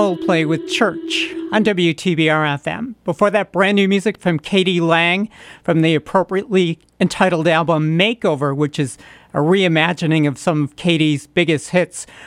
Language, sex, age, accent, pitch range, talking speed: English, male, 50-69, American, 150-185 Hz, 140 wpm